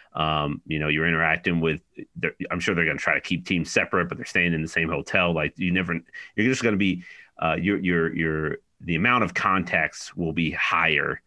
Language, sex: English, male